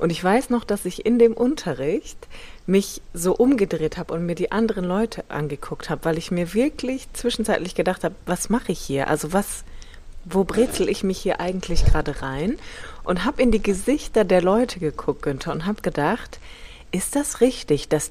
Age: 30-49